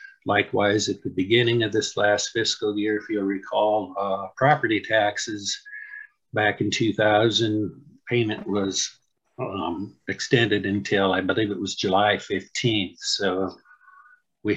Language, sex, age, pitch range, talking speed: English, male, 50-69, 100-135 Hz, 130 wpm